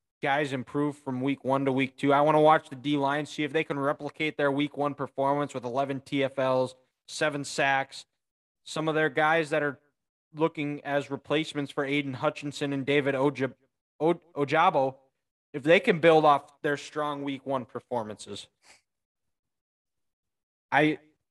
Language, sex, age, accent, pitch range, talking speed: English, male, 20-39, American, 135-170 Hz, 160 wpm